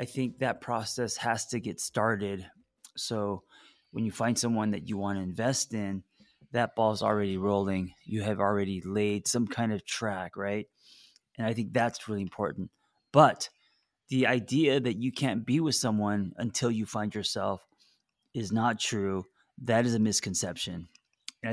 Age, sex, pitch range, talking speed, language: 20-39, male, 100-120 Hz, 165 wpm, English